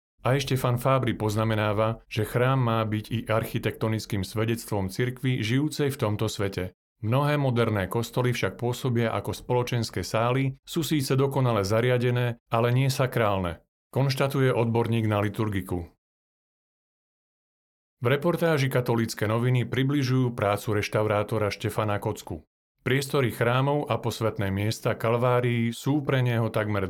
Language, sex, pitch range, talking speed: Slovak, male, 105-125 Hz, 120 wpm